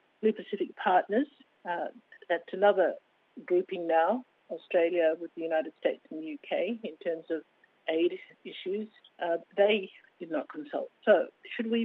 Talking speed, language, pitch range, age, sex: 145 wpm, English, 170-245 Hz, 60-79, female